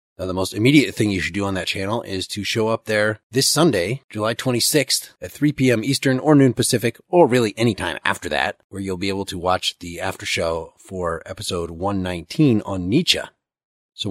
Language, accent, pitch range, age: English, American, 95-125 Hz, 30-49